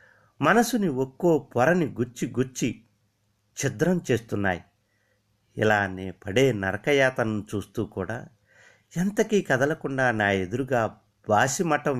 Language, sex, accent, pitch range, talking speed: Telugu, male, native, 100-130 Hz, 85 wpm